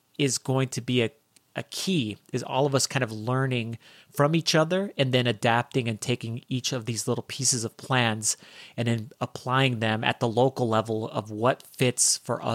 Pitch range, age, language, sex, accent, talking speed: 115-130 Hz, 30-49, English, male, American, 195 wpm